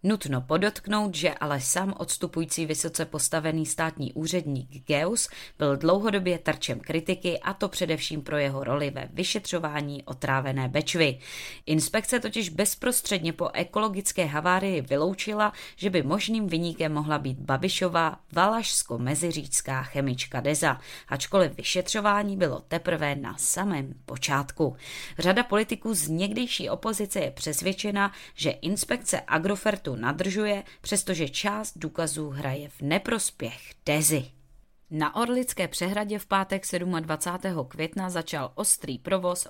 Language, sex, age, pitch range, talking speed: Czech, female, 20-39, 145-195 Hz, 115 wpm